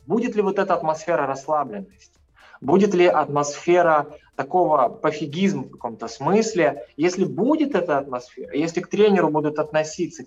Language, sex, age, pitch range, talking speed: Russian, male, 20-39, 135-180 Hz, 135 wpm